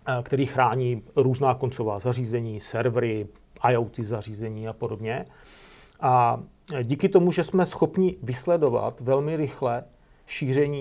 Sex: male